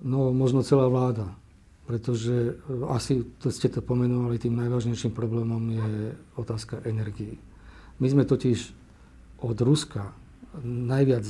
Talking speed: 115 wpm